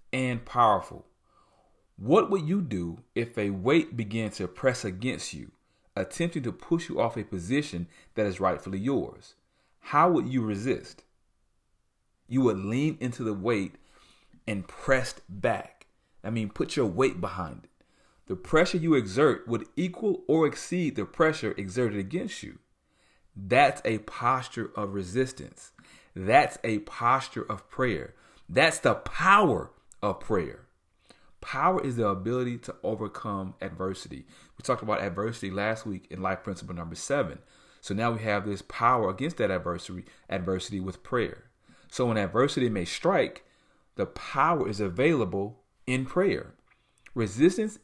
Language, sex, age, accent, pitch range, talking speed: English, male, 40-59, American, 100-130 Hz, 145 wpm